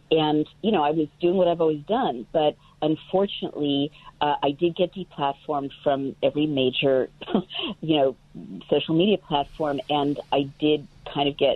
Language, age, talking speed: English, 40-59, 160 wpm